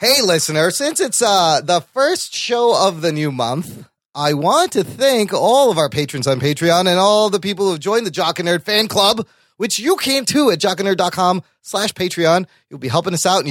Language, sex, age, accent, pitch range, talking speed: English, male, 30-49, American, 165-230 Hz, 220 wpm